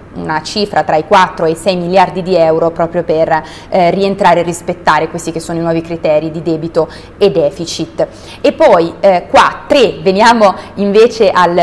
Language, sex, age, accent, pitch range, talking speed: Italian, female, 30-49, native, 165-205 Hz, 180 wpm